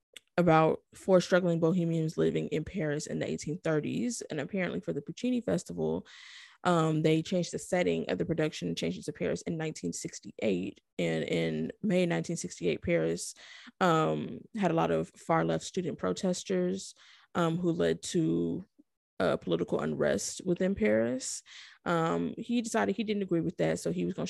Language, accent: English, American